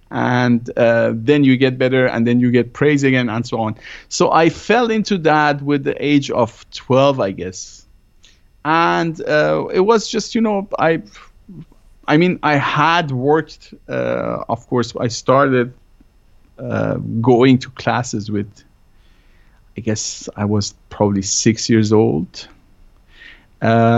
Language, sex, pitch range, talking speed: English, male, 110-135 Hz, 150 wpm